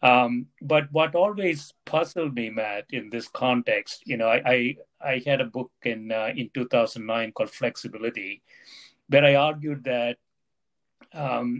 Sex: male